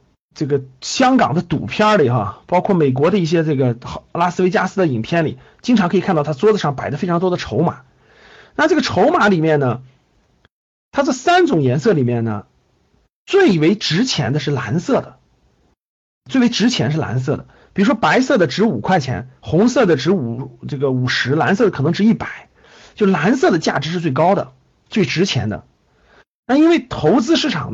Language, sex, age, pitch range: Chinese, male, 50-69, 135-215 Hz